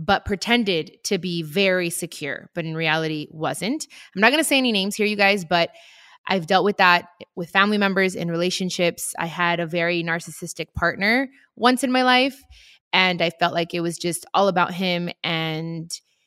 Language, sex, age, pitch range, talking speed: English, female, 20-39, 175-215 Hz, 190 wpm